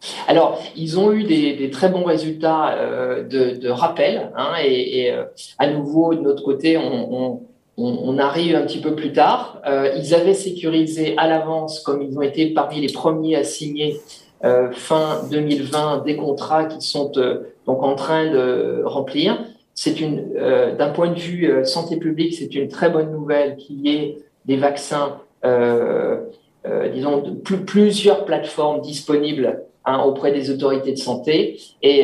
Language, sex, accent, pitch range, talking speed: French, male, French, 140-170 Hz, 175 wpm